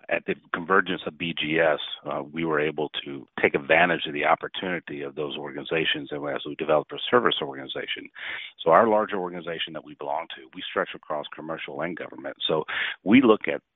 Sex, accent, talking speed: male, American, 185 wpm